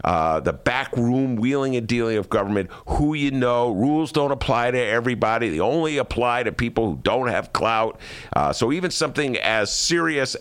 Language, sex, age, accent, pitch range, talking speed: English, male, 50-69, American, 80-125 Hz, 180 wpm